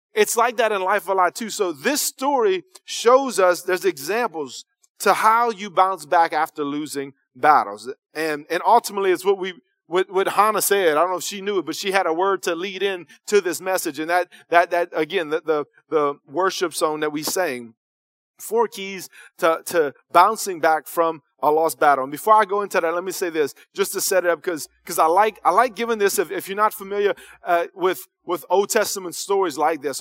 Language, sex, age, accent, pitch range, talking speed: English, male, 30-49, American, 155-200 Hz, 220 wpm